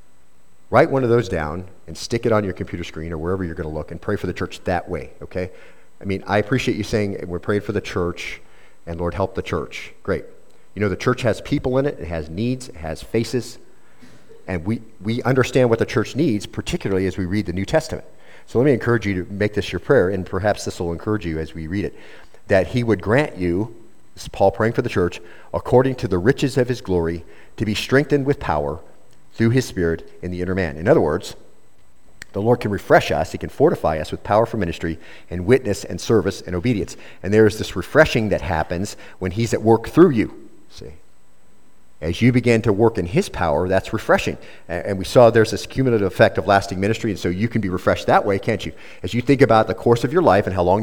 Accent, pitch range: American, 90-120 Hz